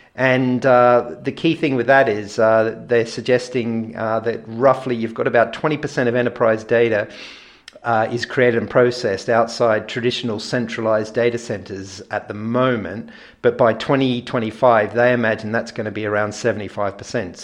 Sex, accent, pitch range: male, Australian, 110-125 Hz